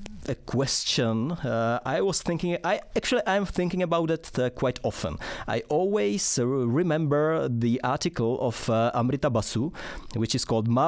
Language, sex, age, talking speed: Czech, male, 30-49, 155 wpm